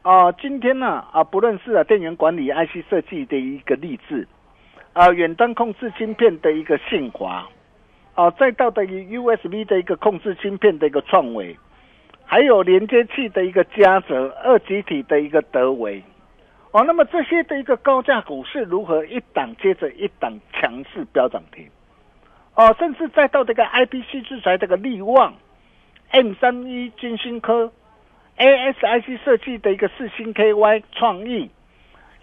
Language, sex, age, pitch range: Chinese, male, 50-69, 180-255 Hz